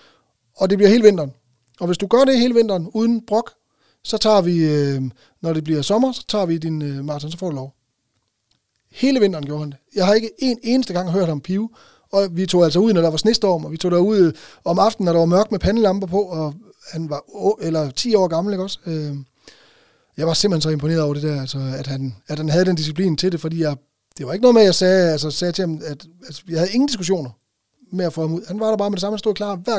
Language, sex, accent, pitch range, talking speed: Danish, male, native, 155-200 Hz, 265 wpm